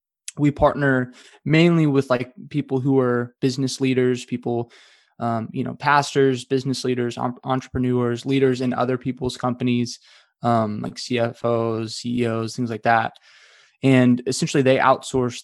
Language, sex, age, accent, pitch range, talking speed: English, male, 20-39, American, 120-135 Hz, 130 wpm